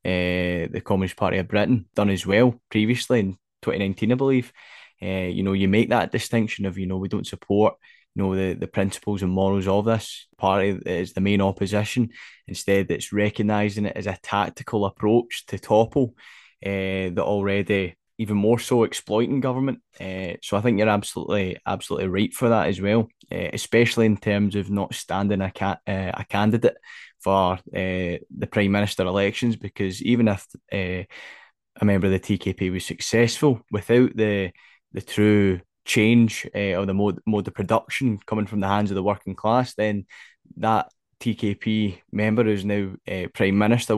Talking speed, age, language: 175 wpm, 10-29, English